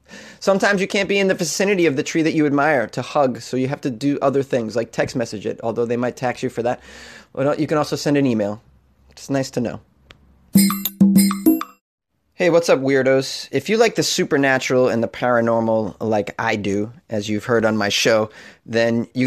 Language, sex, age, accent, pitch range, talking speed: English, male, 30-49, American, 120-155 Hz, 205 wpm